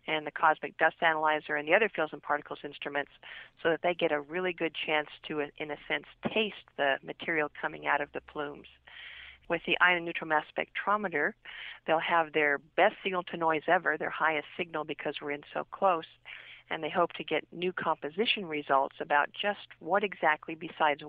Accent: American